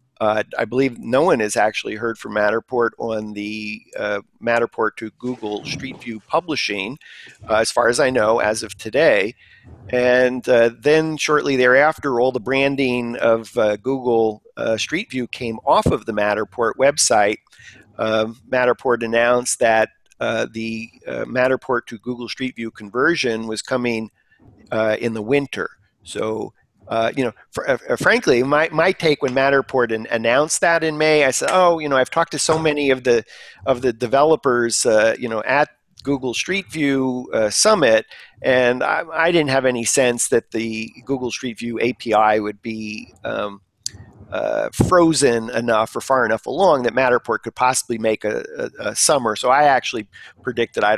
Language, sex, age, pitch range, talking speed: English, male, 50-69, 110-135 Hz, 165 wpm